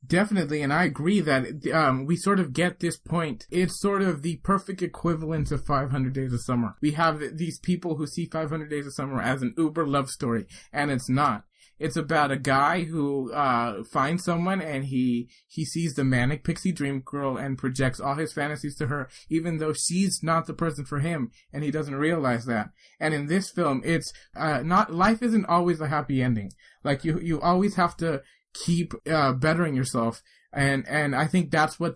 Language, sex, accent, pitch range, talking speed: English, male, American, 135-170 Hz, 200 wpm